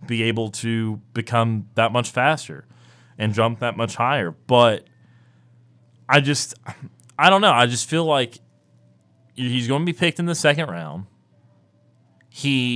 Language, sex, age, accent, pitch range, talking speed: English, male, 30-49, American, 105-125 Hz, 150 wpm